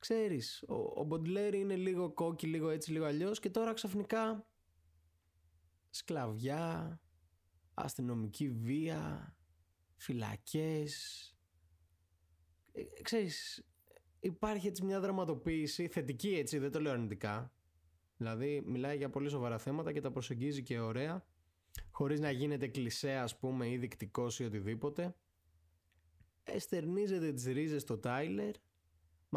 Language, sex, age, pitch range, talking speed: Greek, male, 20-39, 95-155 Hz, 115 wpm